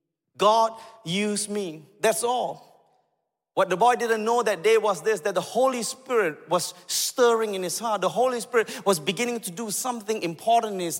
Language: German